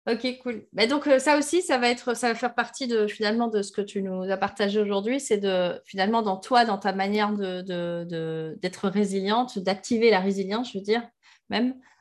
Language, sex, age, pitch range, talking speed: French, female, 20-39, 185-225 Hz, 220 wpm